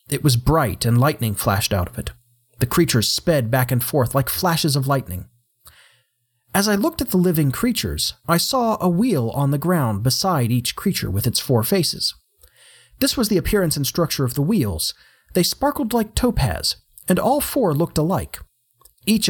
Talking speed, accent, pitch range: 185 wpm, American, 120-175 Hz